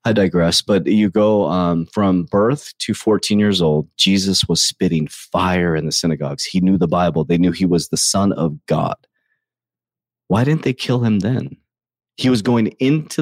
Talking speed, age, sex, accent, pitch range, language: 185 wpm, 30-49, male, American, 90-125 Hz, English